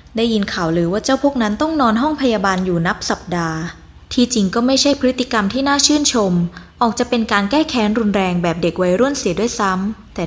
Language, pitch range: Thai, 190-250 Hz